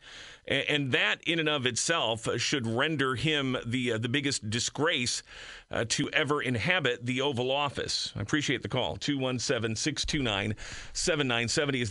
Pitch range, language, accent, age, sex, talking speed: 120-160 Hz, English, American, 40-59, male, 135 wpm